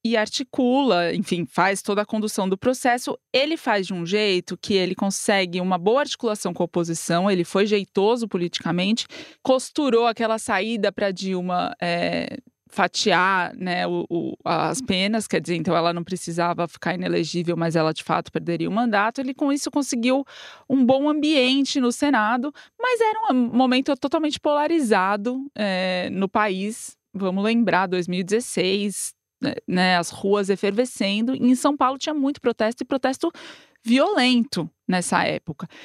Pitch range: 180-255 Hz